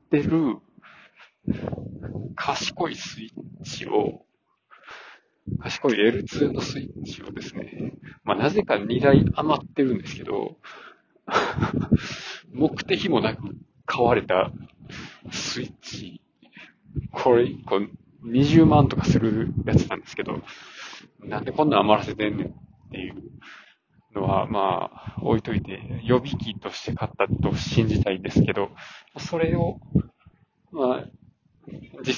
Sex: male